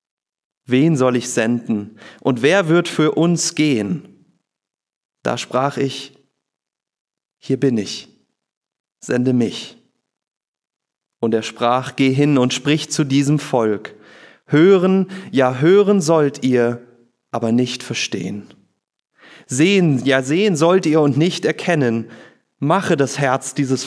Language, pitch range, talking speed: German, 115-145 Hz, 120 wpm